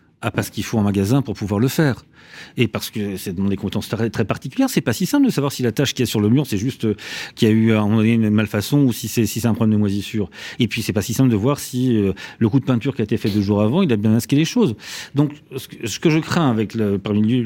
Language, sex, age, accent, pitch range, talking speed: French, male, 40-59, French, 105-135 Hz, 310 wpm